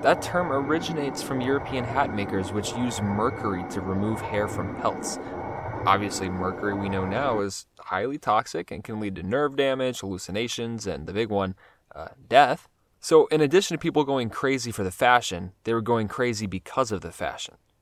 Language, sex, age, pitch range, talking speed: English, male, 20-39, 100-130 Hz, 180 wpm